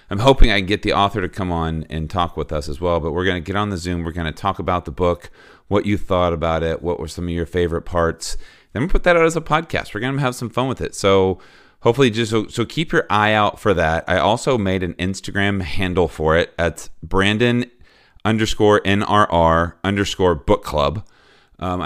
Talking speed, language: 230 wpm, English